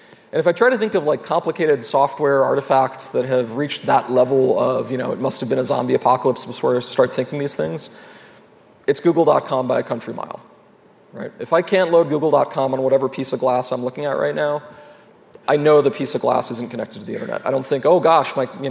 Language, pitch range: English, 130-165 Hz